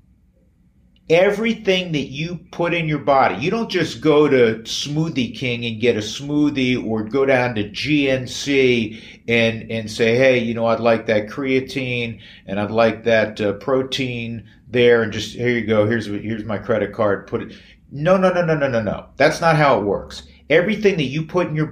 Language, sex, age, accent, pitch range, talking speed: English, male, 50-69, American, 105-140 Hz, 195 wpm